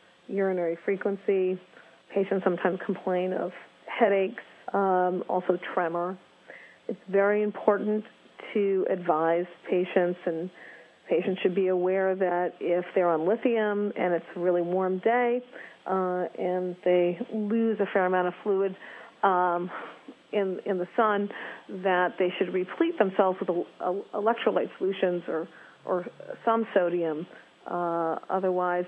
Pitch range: 180-205 Hz